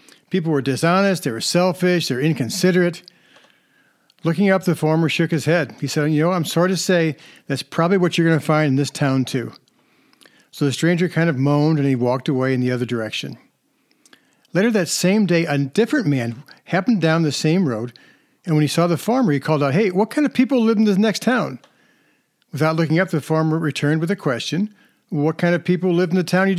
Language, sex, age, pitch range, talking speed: English, male, 60-79, 140-190 Hz, 220 wpm